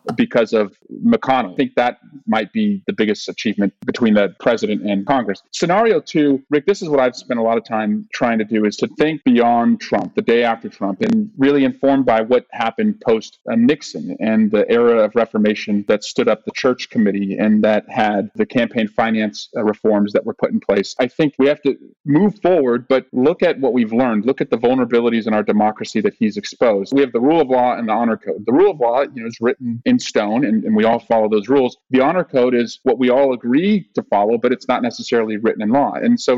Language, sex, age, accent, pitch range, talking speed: English, male, 40-59, American, 115-160 Hz, 230 wpm